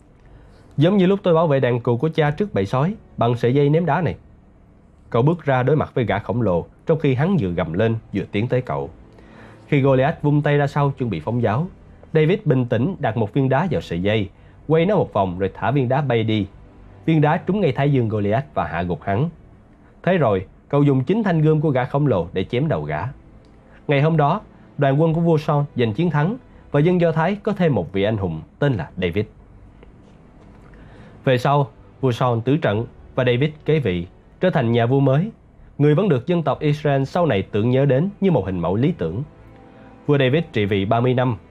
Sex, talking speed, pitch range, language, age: male, 225 wpm, 105-155 Hz, Vietnamese, 20-39